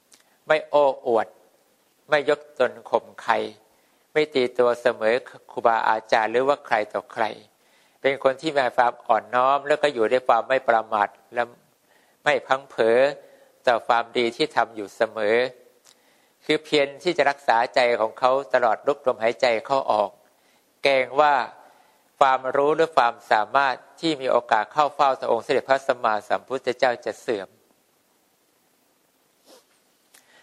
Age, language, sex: 60-79, English, male